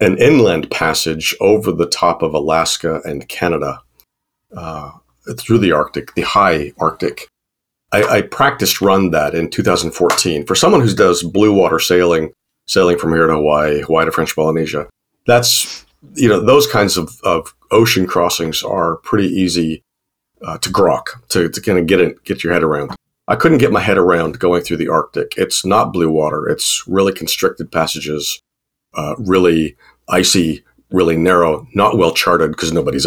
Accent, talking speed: American, 170 wpm